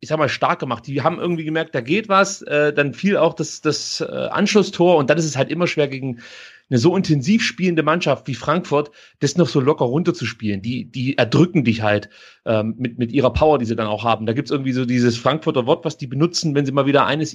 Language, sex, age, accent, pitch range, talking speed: German, male, 30-49, German, 130-165 Hz, 235 wpm